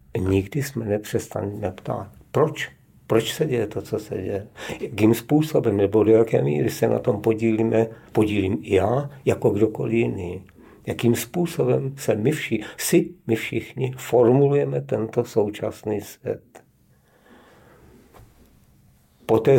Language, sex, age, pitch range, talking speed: Czech, male, 50-69, 100-120 Hz, 125 wpm